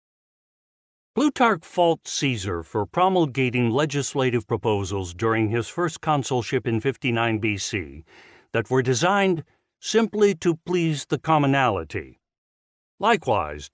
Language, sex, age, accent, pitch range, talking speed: English, male, 60-79, American, 120-165 Hz, 100 wpm